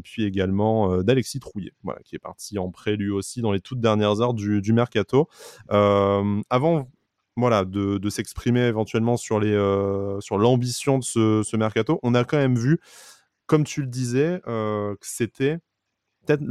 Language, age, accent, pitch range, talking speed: French, 20-39, French, 100-120 Hz, 180 wpm